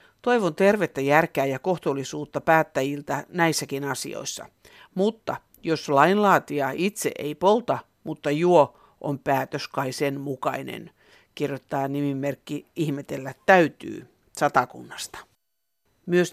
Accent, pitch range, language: native, 145-215 Hz, Finnish